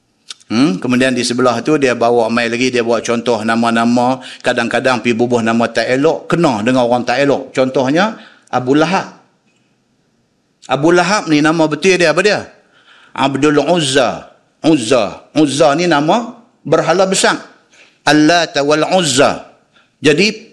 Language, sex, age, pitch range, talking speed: Malay, male, 50-69, 130-190 Hz, 130 wpm